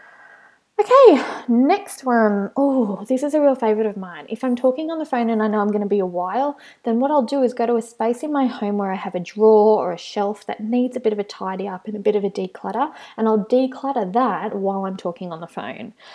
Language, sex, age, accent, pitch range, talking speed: English, female, 20-39, Australian, 205-255 Hz, 260 wpm